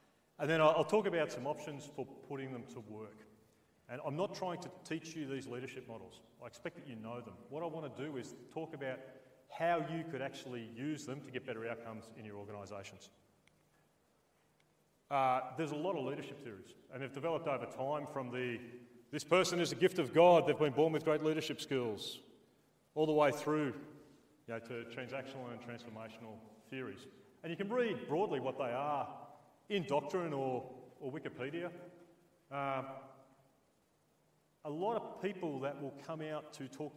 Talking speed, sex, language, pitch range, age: 175 wpm, male, English, 125-155 Hz, 30-49